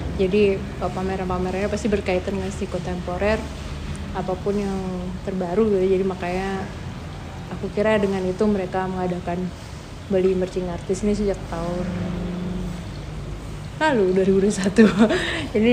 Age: 20-39